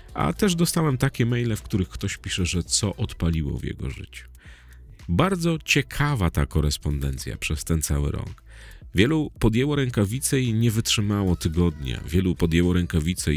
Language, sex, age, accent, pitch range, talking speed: Polish, male, 40-59, native, 80-105 Hz, 150 wpm